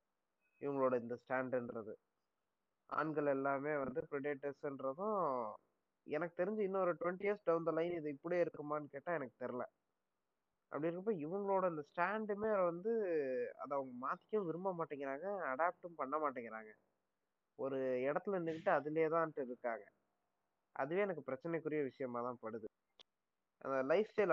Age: 20-39